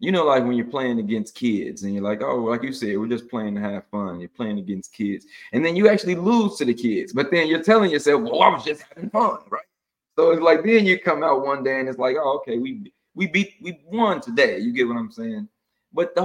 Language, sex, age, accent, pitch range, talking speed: English, male, 20-39, American, 140-215 Hz, 265 wpm